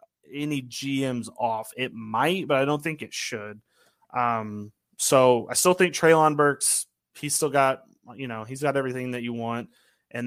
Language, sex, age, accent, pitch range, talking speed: English, male, 20-39, American, 110-140 Hz, 175 wpm